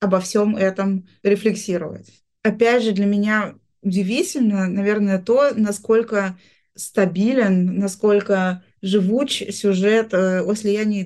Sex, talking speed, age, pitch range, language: female, 100 wpm, 20-39, 195-225 Hz, Russian